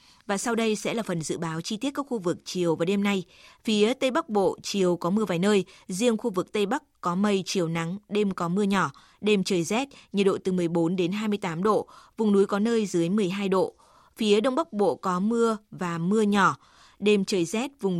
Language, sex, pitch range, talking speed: Vietnamese, female, 180-215 Hz, 230 wpm